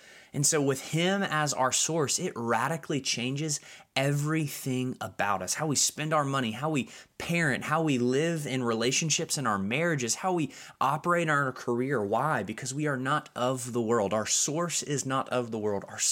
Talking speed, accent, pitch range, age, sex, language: 185 wpm, American, 110-140 Hz, 20-39, male, English